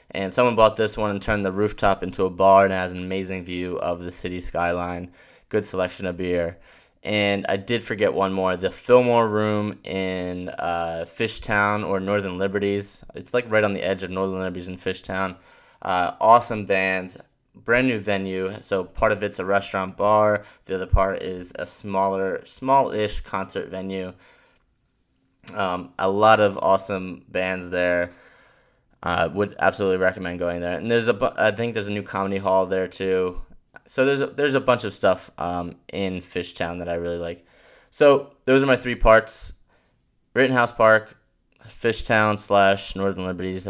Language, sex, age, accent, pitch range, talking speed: English, male, 20-39, American, 95-110 Hz, 175 wpm